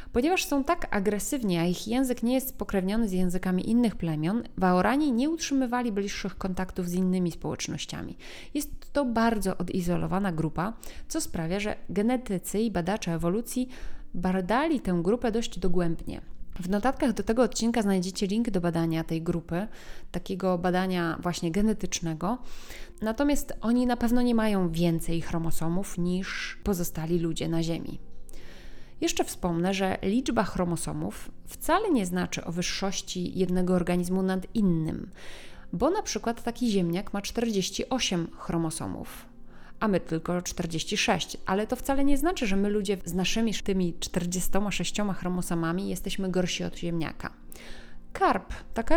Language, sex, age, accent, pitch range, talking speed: Polish, female, 20-39, native, 175-230 Hz, 135 wpm